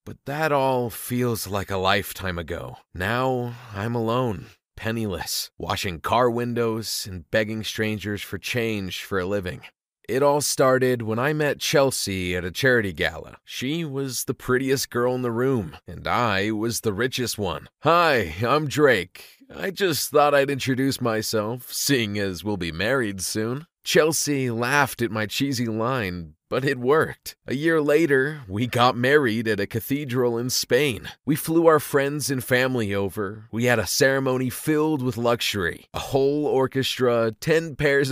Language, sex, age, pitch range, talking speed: English, male, 30-49, 110-145 Hz, 160 wpm